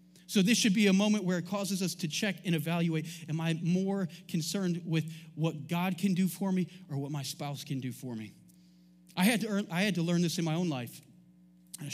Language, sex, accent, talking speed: English, male, American, 235 wpm